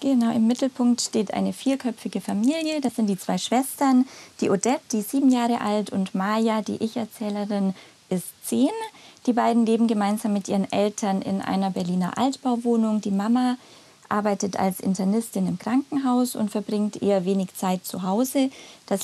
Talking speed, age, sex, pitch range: 160 wpm, 20-39, female, 195-235 Hz